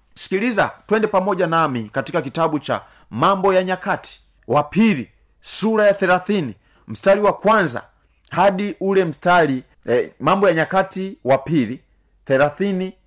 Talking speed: 125 wpm